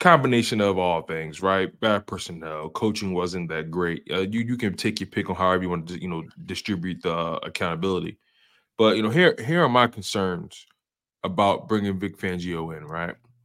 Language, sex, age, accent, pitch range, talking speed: English, male, 20-39, American, 90-110 Hz, 190 wpm